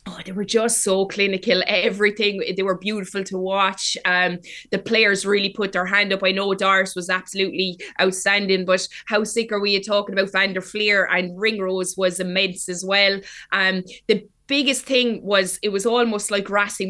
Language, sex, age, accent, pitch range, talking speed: English, female, 20-39, Irish, 185-210 Hz, 185 wpm